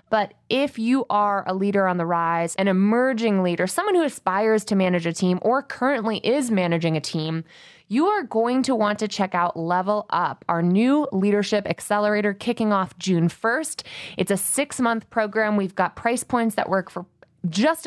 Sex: female